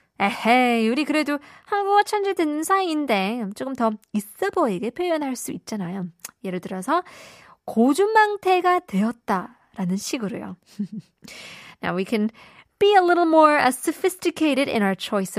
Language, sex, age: Korean, female, 20-39